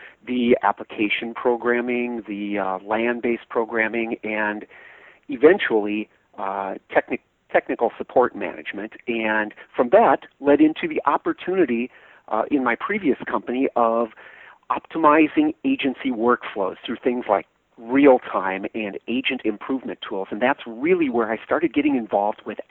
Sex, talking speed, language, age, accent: male, 120 wpm, English, 40-59, American